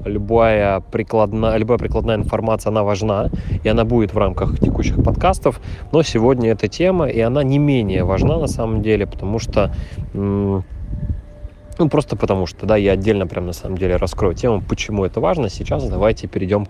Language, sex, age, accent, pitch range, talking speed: Russian, male, 20-39, native, 95-125 Hz, 165 wpm